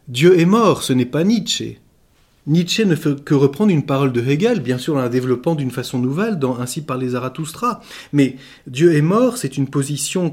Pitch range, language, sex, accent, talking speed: 140-205 Hz, French, male, French, 210 wpm